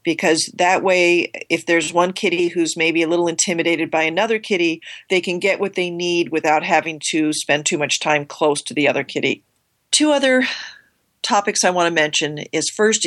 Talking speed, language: 195 wpm, English